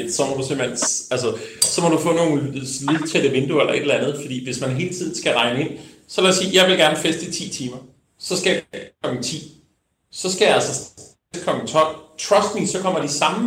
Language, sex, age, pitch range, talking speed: Danish, male, 30-49, 145-185 Hz, 235 wpm